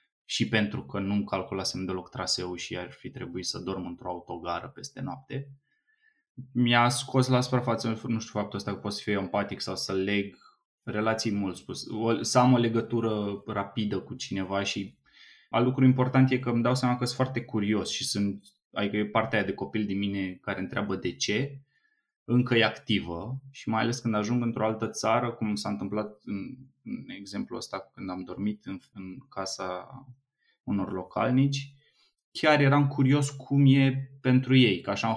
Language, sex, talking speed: Romanian, male, 180 wpm